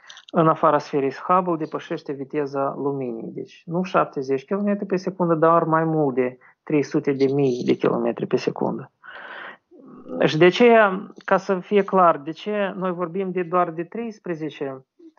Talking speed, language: 140 wpm, Romanian